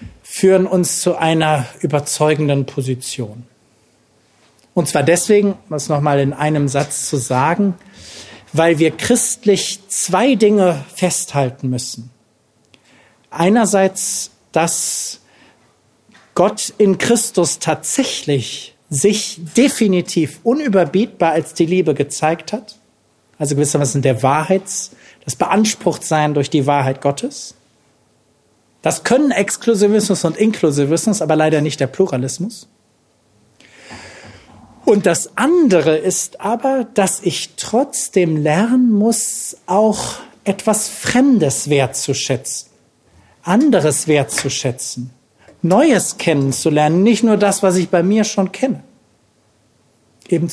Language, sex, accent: German, male, German